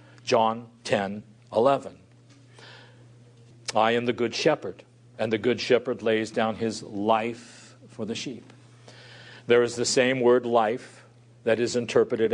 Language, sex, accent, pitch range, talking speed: English, male, American, 115-130 Hz, 135 wpm